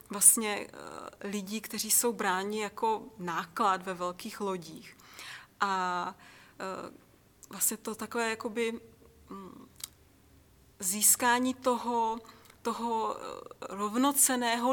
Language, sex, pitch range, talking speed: Czech, female, 210-230 Hz, 90 wpm